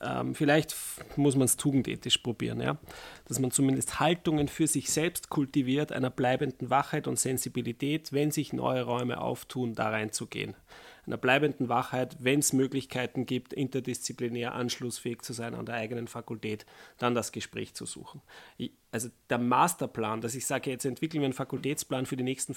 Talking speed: 160 wpm